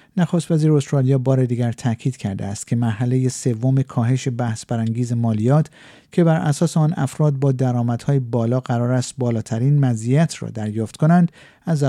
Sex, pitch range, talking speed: male, 120-155 Hz, 155 wpm